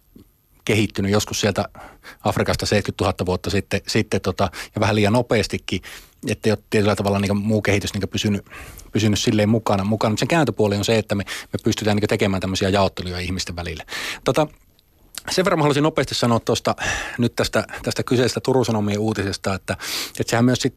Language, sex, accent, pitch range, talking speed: Finnish, male, native, 100-120 Hz, 170 wpm